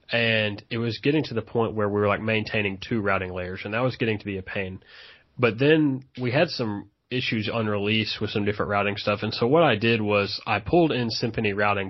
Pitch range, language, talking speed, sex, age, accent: 100-115 Hz, English, 235 wpm, male, 20-39, American